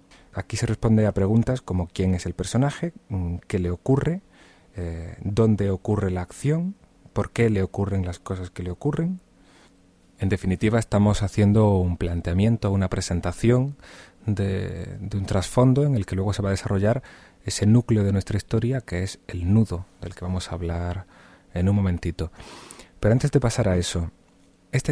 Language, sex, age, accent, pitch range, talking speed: Spanish, male, 30-49, Spanish, 90-115 Hz, 170 wpm